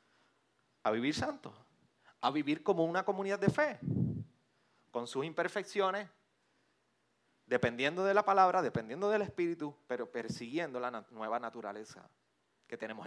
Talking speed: 125 wpm